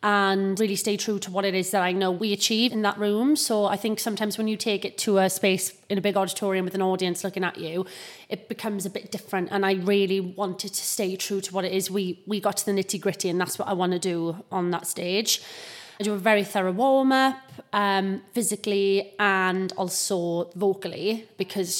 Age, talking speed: 30-49, 220 wpm